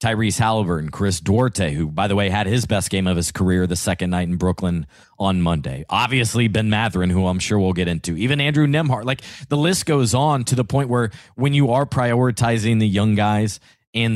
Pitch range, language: 100-130 Hz, English